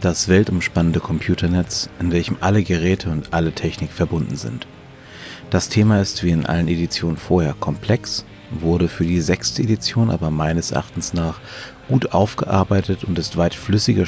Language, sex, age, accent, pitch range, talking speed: German, male, 30-49, German, 80-105 Hz, 155 wpm